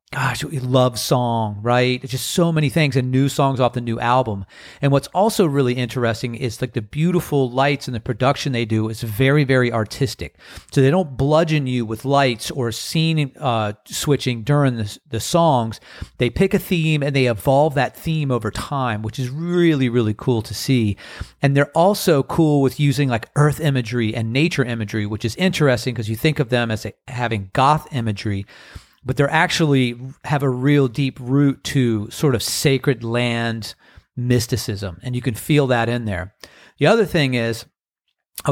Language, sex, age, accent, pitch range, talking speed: English, male, 40-59, American, 115-145 Hz, 185 wpm